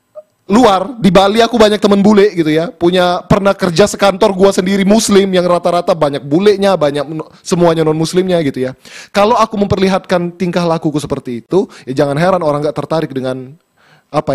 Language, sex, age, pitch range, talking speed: Indonesian, male, 20-39, 145-185 Hz, 170 wpm